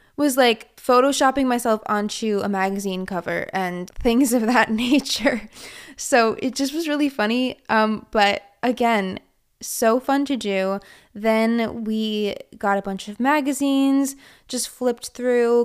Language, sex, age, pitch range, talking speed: English, female, 20-39, 205-255 Hz, 140 wpm